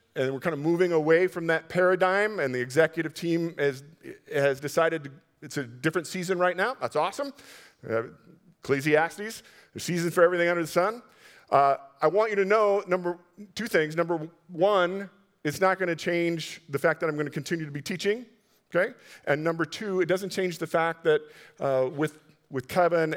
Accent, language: American, English